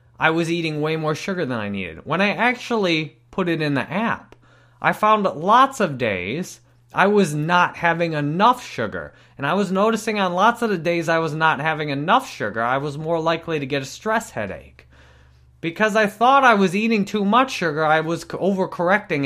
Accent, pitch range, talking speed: American, 120-180 Hz, 205 wpm